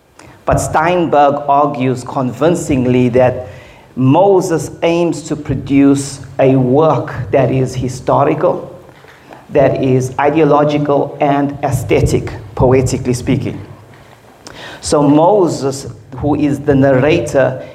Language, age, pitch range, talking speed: English, 40-59, 115-140 Hz, 90 wpm